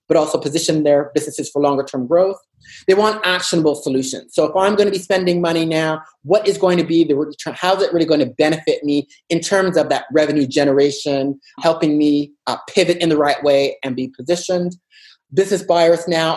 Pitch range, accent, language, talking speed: 140-175 Hz, American, English, 205 wpm